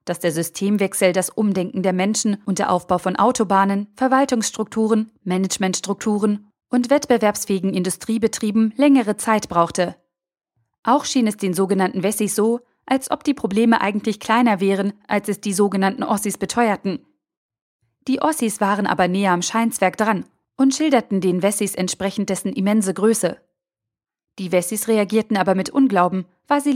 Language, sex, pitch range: German, female, 185-225 Hz